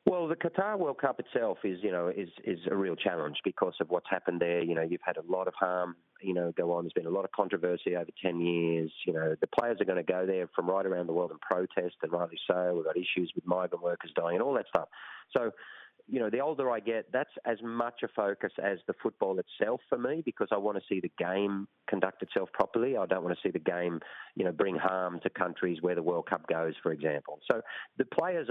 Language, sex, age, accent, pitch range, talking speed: English, male, 30-49, Australian, 90-105 Hz, 255 wpm